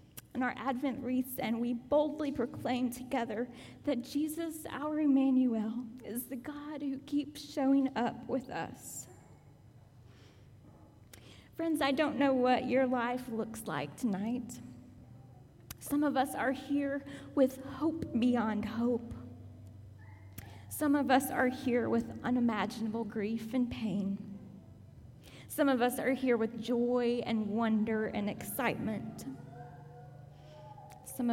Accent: American